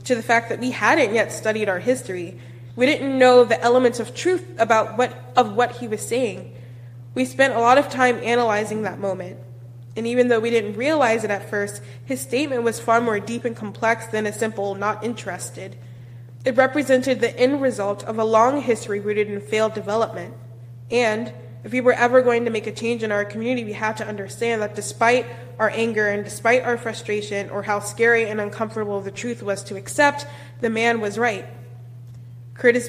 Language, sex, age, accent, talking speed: English, female, 20-39, American, 195 wpm